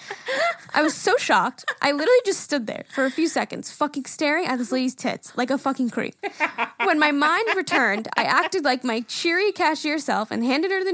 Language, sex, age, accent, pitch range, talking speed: English, female, 10-29, American, 230-320 Hz, 210 wpm